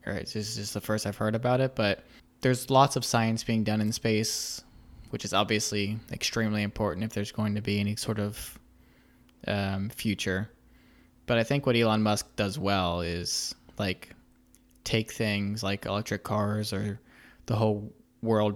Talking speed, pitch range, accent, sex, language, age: 180 wpm, 100-115 Hz, American, male, English, 20-39